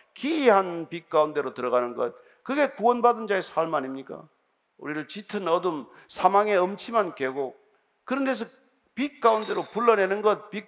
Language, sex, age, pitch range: Korean, male, 50-69, 195-260 Hz